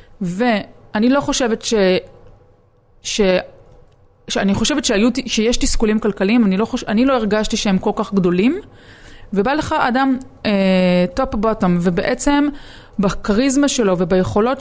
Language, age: Hebrew, 20-39